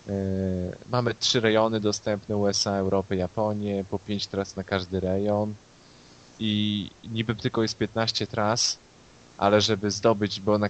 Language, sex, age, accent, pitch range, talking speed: Polish, male, 20-39, native, 95-110 Hz, 135 wpm